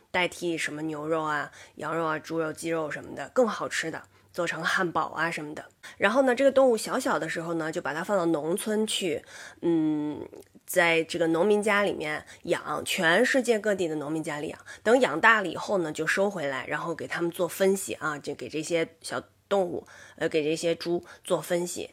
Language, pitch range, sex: Chinese, 160-215 Hz, female